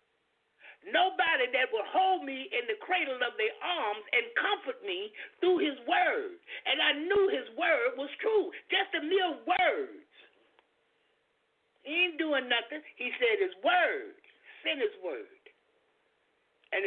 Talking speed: 140 wpm